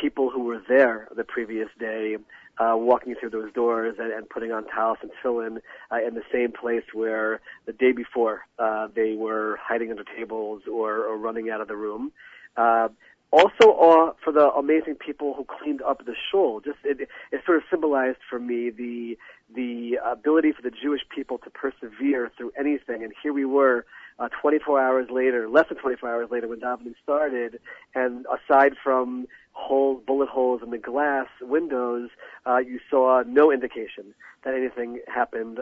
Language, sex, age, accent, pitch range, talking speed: English, male, 40-59, American, 115-135 Hz, 180 wpm